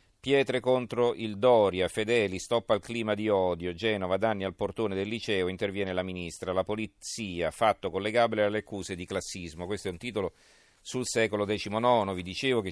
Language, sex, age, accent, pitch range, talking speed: Italian, male, 40-59, native, 95-115 Hz, 175 wpm